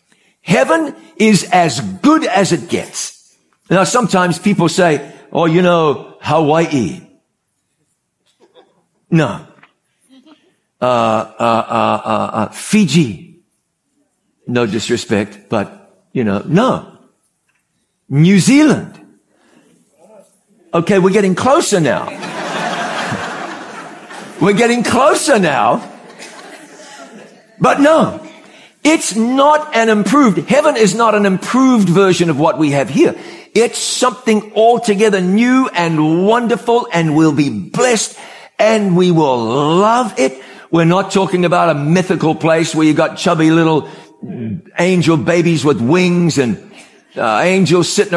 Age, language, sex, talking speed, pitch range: 60-79, English, male, 115 wpm, 165-220 Hz